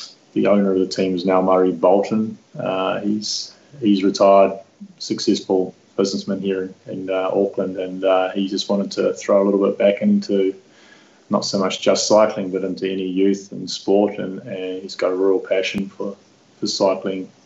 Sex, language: male, English